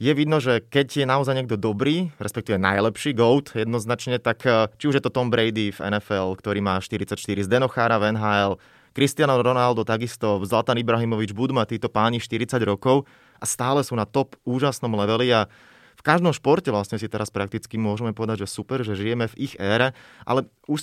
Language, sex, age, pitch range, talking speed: Slovak, male, 20-39, 105-130 Hz, 185 wpm